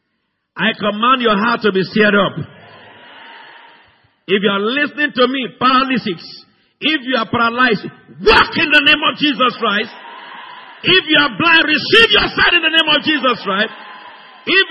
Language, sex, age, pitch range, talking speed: English, male, 50-69, 240-320 Hz, 165 wpm